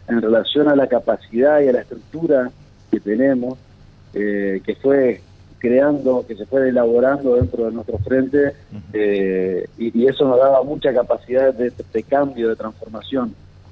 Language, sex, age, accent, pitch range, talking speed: Spanish, male, 40-59, Argentinian, 105-135 Hz, 160 wpm